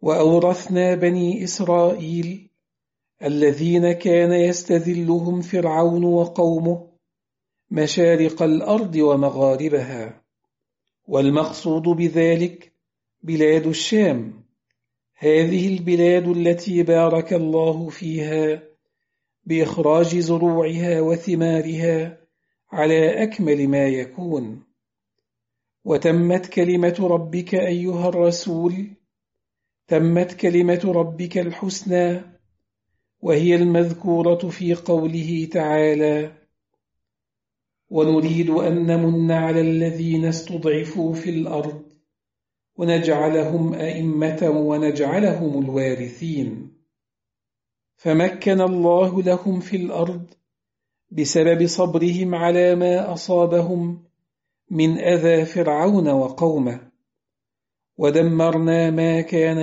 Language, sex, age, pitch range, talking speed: English, male, 50-69, 155-175 Hz, 70 wpm